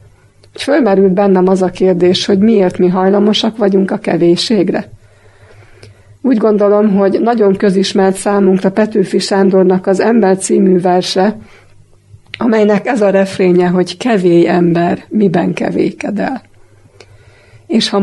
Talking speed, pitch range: 120 wpm, 175-200 Hz